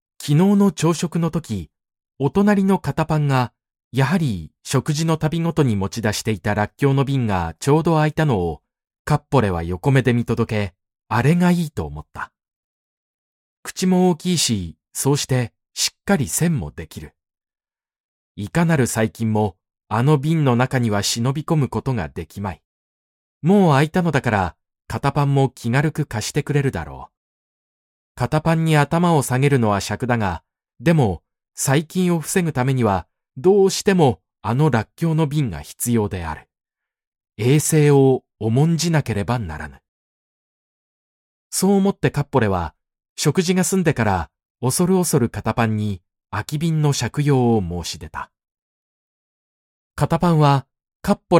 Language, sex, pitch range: Japanese, male, 105-155 Hz